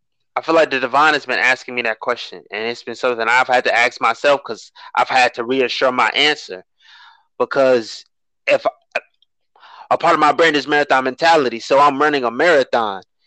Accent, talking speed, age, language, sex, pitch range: American, 195 wpm, 20-39, English, male, 140-175 Hz